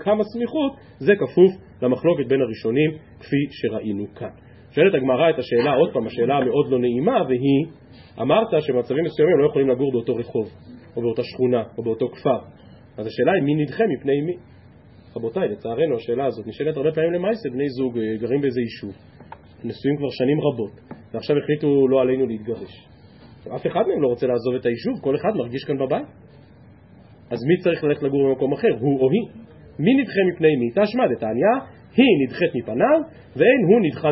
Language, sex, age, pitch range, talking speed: Hebrew, male, 30-49, 125-180 Hz, 155 wpm